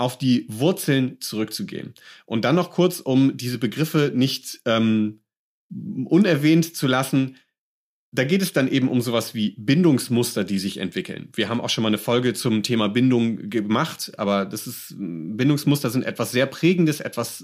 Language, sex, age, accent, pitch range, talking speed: German, male, 30-49, German, 115-155 Hz, 165 wpm